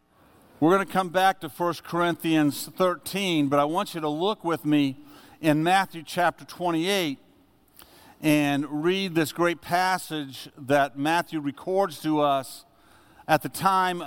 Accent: American